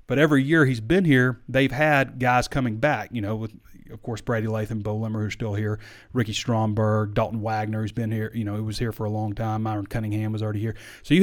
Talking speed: 245 wpm